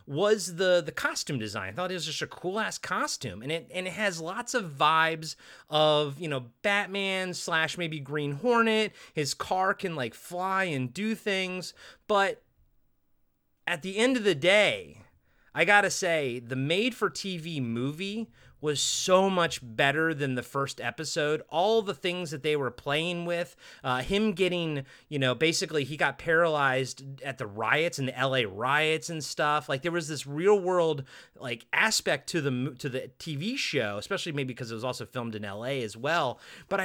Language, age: English, 30-49